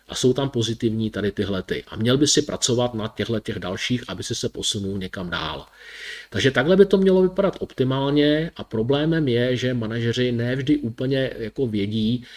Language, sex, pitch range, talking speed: Czech, male, 115-145 Hz, 180 wpm